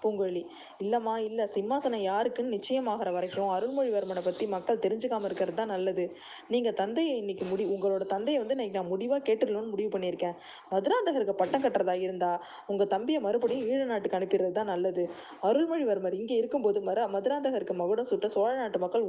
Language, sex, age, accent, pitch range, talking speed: Tamil, female, 20-39, native, 190-245 Hz, 145 wpm